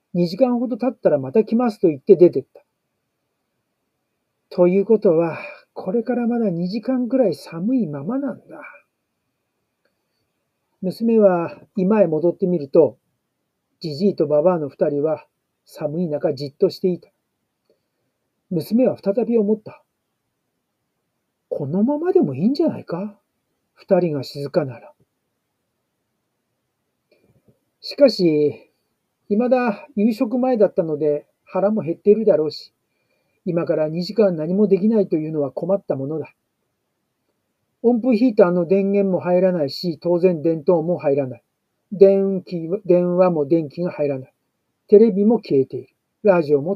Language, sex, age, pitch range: Japanese, male, 60-79, 155-215 Hz